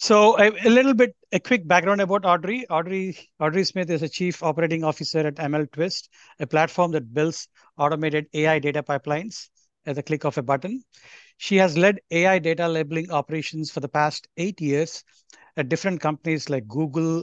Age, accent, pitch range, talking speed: 60-79, Indian, 150-185 Hz, 180 wpm